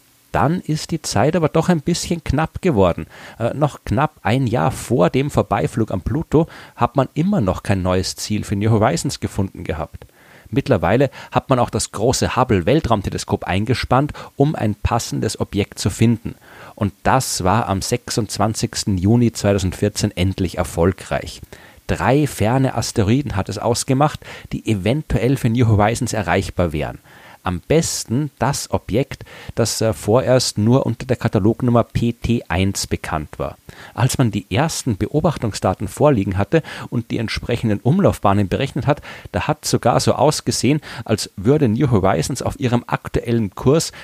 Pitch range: 100-130 Hz